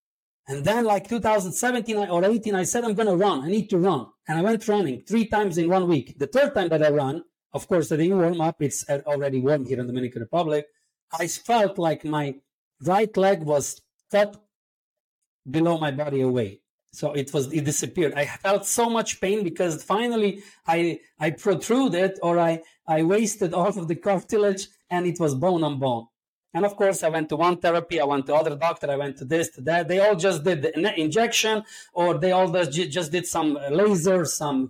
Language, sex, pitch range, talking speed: English, male, 150-195 Hz, 205 wpm